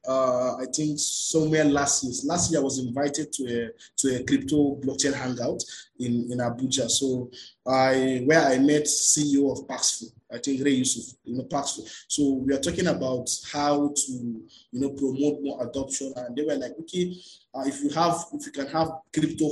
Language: English